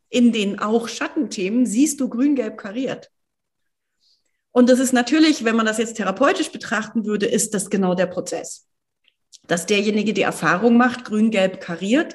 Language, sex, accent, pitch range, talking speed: German, female, German, 175-235 Hz, 155 wpm